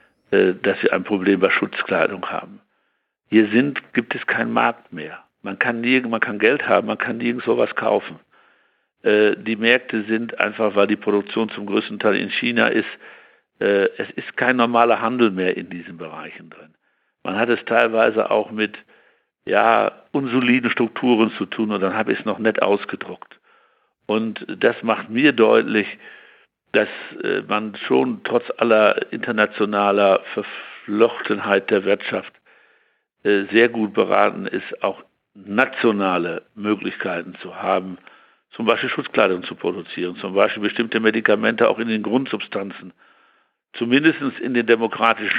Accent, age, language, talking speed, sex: German, 60-79, German, 140 wpm, male